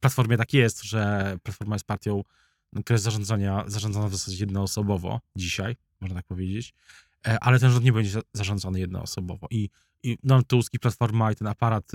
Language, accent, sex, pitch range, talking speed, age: Polish, native, male, 105-125 Hz, 160 wpm, 20-39